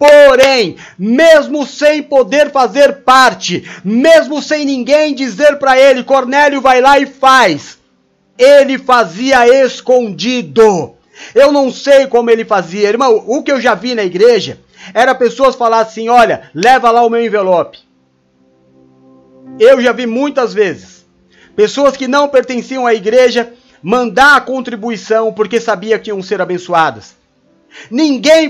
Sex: male